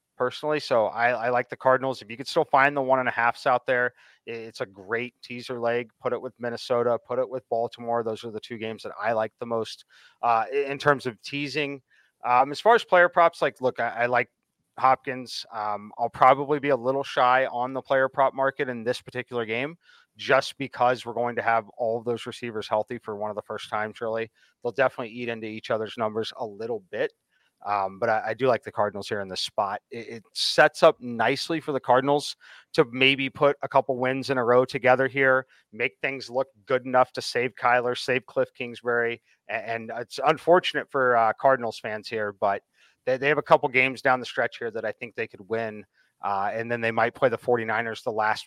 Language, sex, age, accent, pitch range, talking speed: English, male, 30-49, American, 115-135 Hz, 225 wpm